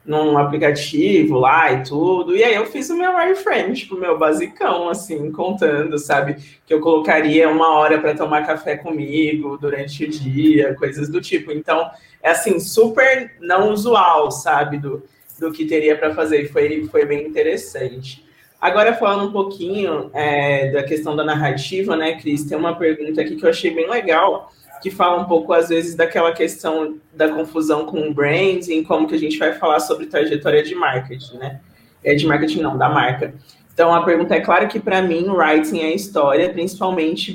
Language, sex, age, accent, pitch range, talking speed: Portuguese, male, 20-39, Brazilian, 150-190 Hz, 185 wpm